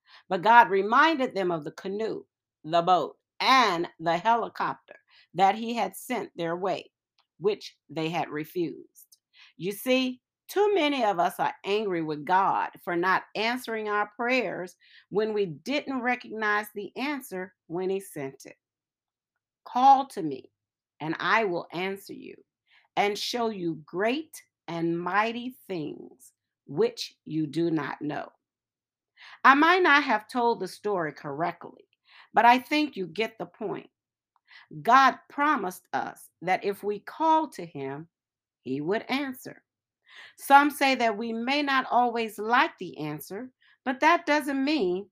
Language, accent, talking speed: English, American, 145 wpm